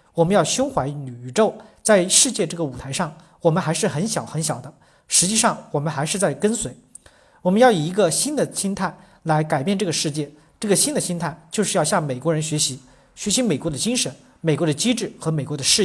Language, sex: Chinese, male